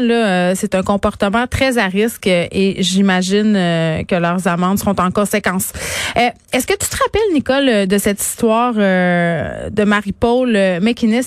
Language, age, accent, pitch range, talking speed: French, 30-49, Canadian, 195-240 Hz, 145 wpm